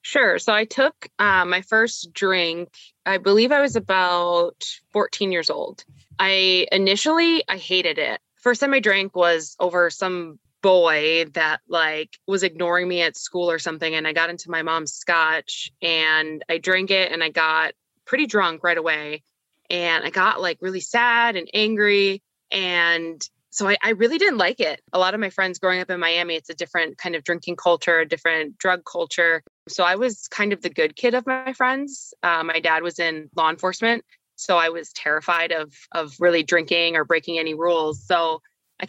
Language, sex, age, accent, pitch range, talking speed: English, female, 20-39, American, 165-195 Hz, 190 wpm